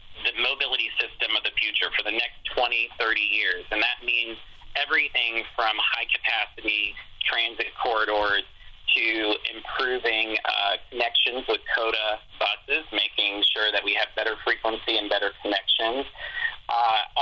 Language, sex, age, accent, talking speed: English, male, 30-49, American, 130 wpm